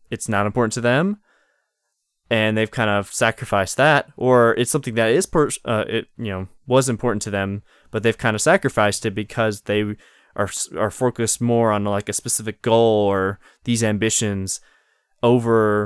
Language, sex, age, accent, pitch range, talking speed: English, male, 20-39, American, 100-120 Hz, 175 wpm